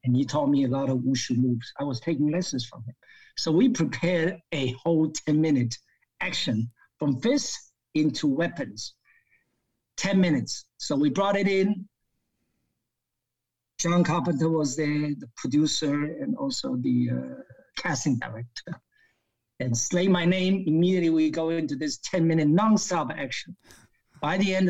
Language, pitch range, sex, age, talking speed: English, 145-190 Hz, male, 50-69, 145 wpm